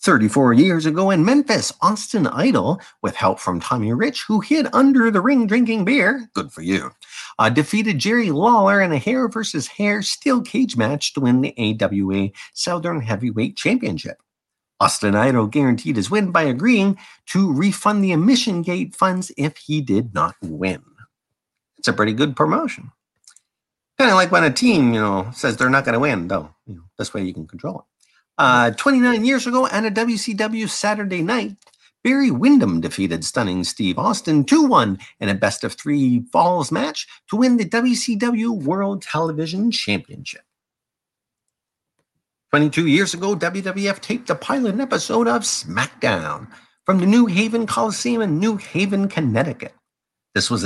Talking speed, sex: 160 wpm, male